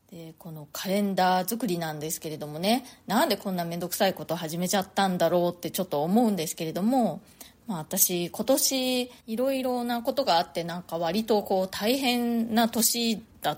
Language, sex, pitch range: Japanese, female, 170-235 Hz